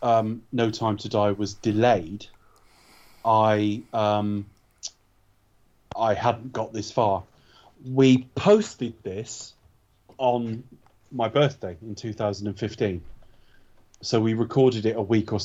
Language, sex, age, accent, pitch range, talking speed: English, male, 30-49, British, 95-110 Hz, 115 wpm